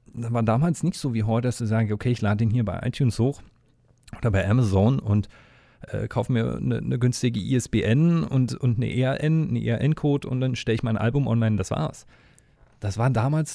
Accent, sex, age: German, male, 40-59